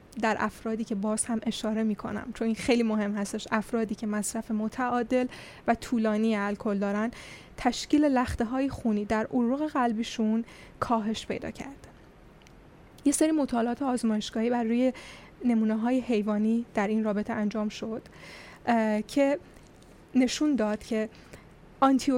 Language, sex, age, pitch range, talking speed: Persian, female, 10-29, 215-245 Hz, 135 wpm